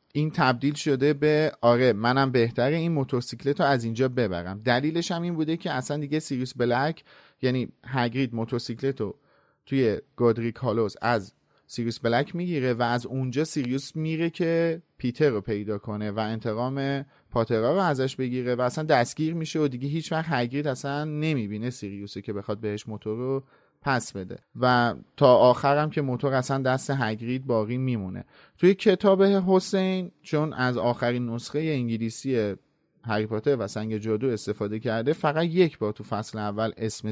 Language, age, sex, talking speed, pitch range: Persian, 30-49, male, 160 wpm, 115-145 Hz